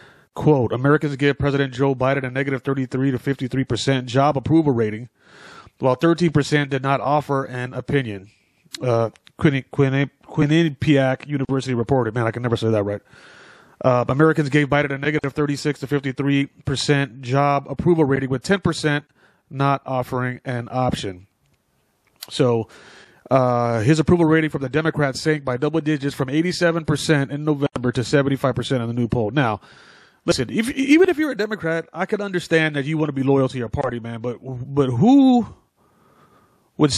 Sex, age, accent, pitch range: male, 30-49, American, 130-160 Hz